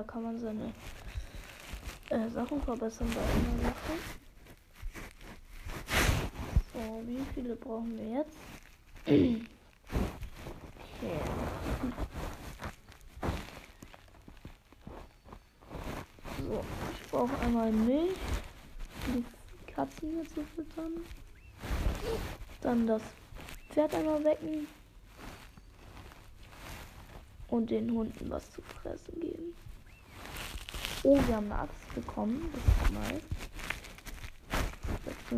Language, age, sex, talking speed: German, 20-39, female, 80 wpm